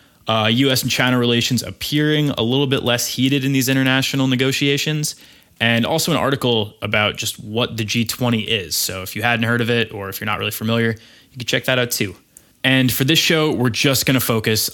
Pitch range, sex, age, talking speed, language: 105-130 Hz, male, 20-39, 210 wpm, English